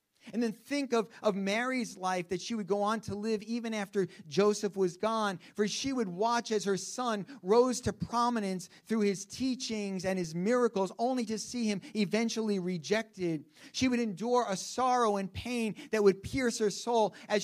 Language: English